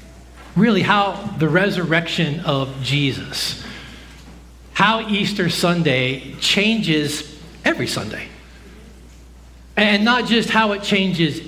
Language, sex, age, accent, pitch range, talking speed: English, male, 40-59, American, 95-155 Hz, 95 wpm